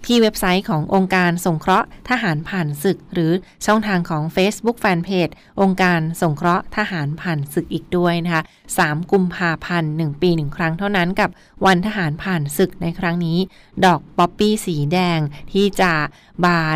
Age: 20-39